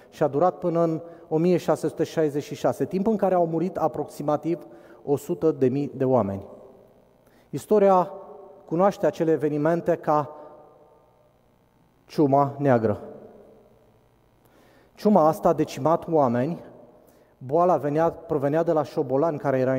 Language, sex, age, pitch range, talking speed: Romanian, male, 30-49, 130-165 Hz, 105 wpm